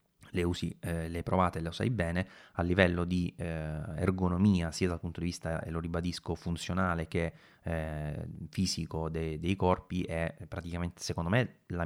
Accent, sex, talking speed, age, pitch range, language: Italian, male, 170 wpm, 30-49, 80-90 Hz, English